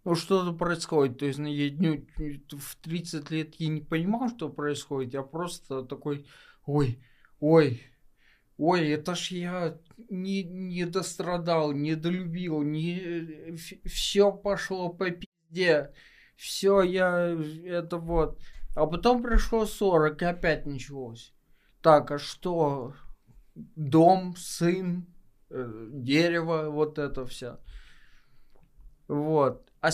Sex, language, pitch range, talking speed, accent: male, Russian, 145-175 Hz, 115 wpm, native